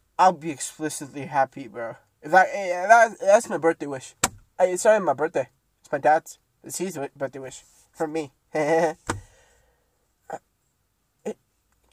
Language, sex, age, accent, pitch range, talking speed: English, male, 20-39, American, 135-200 Hz, 125 wpm